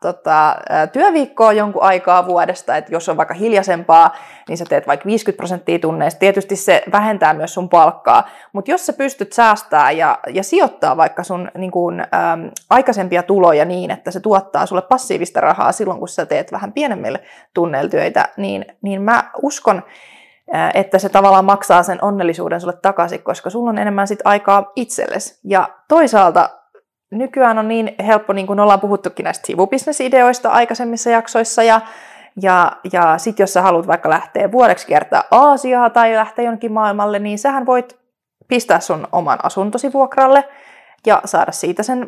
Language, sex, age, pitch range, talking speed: Finnish, female, 20-39, 190-245 Hz, 160 wpm